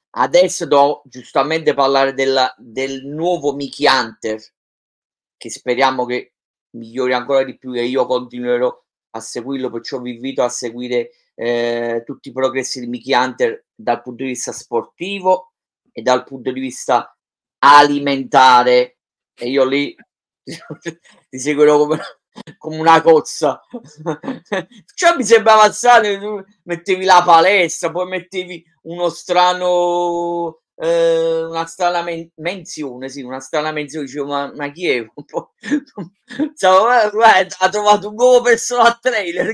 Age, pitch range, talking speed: 30-49, 135-185 Hz, 140 wpm